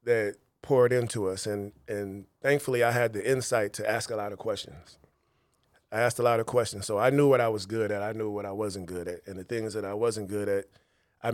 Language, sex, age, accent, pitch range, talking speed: English, male, 30-49, American, 105-120 Hz, 250 wpm